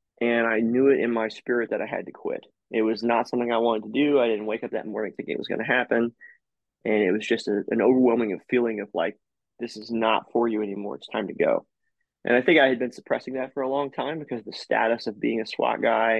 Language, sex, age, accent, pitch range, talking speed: English, male, 20-39, American, 110-125 Hz, 270 wpm